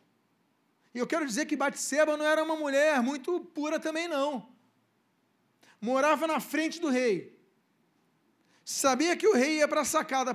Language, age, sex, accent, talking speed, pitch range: Portuguese, 40-59, male, Brazilian, 155 wpm, 205-285 Hz